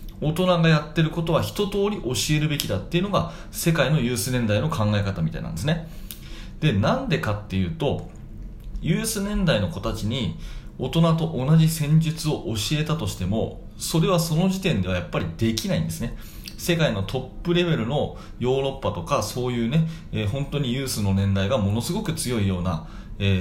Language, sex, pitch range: Japanese, male, 110-175 Hz